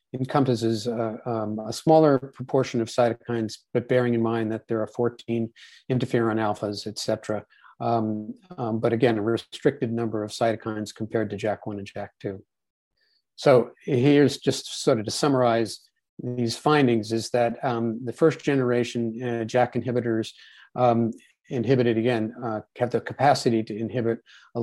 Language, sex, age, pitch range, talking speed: English, male, 50-69, 110-125 Hz, 155 wpm